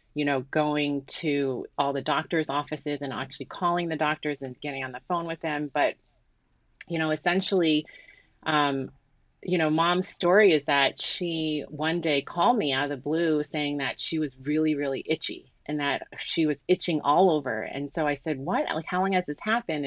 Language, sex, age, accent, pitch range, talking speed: English, female, 30-49, American, 140-165 Hz, 195 wpm